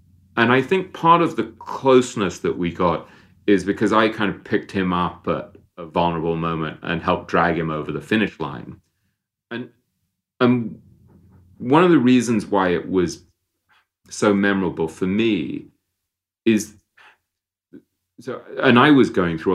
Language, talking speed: English, 155 wpm